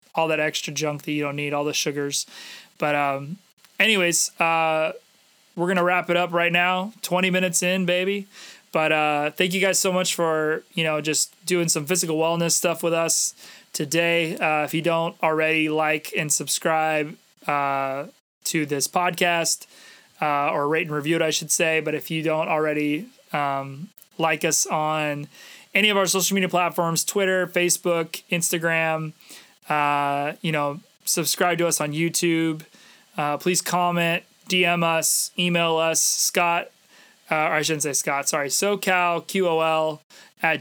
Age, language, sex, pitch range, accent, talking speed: 20-39, English, male, 155-175 Hz, American, 165 wpm